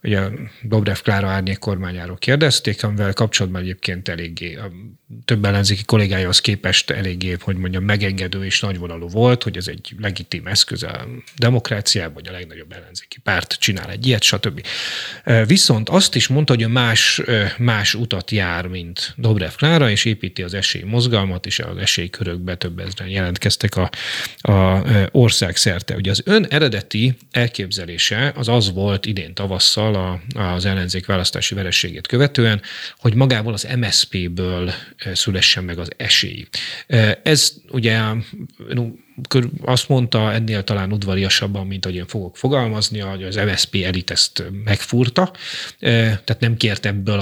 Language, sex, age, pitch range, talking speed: Hungarian, male, 30-49, 95-115 Hz, 140 wpm